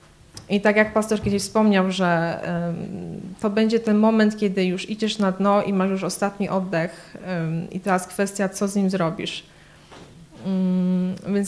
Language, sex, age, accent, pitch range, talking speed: Polish, female, 20-39, native, 180-200 Hz, 150 wpm